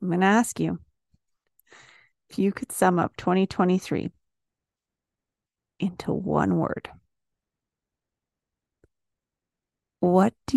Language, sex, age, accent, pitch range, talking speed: English, female, 30-49, American, 160-200 Hz, 90 wpm